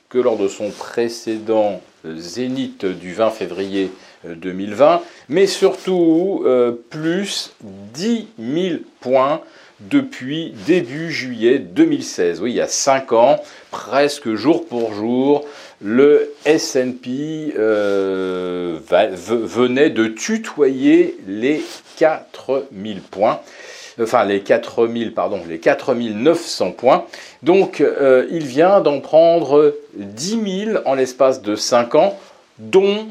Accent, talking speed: French, 115 wpm